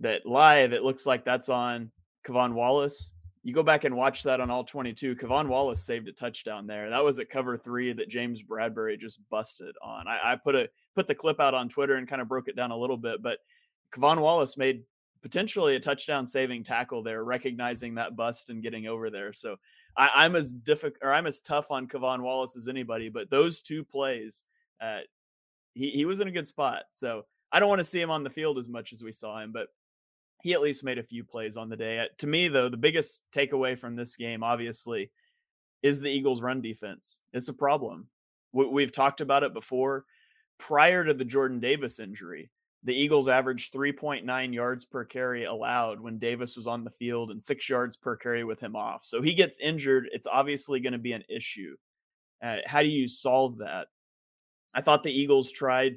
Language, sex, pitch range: English, male, 120-145 Hz